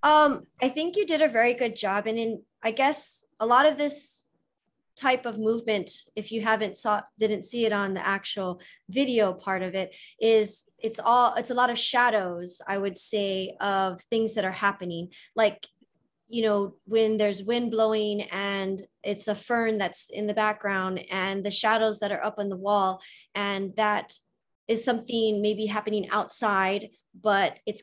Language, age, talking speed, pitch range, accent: English, 20-39, 175 wpm, 195-235 Hz, American